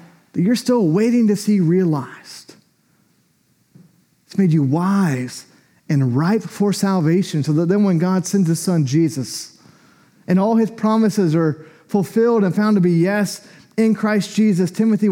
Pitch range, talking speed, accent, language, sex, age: 170-215 Hz, 150 wpm, American, English, male, 30-49